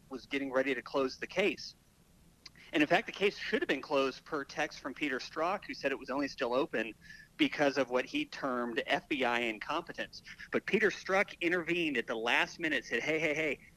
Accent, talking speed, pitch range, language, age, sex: American, 205 wpm, 130-165 Hz, English, 30-49, male